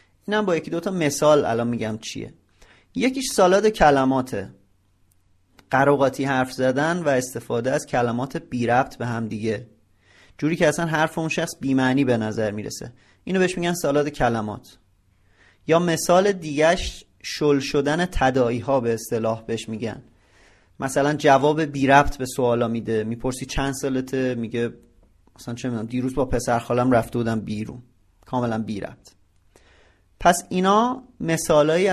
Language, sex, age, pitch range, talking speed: Persian, male, 30-49, 115-150 Hz, 140 wpm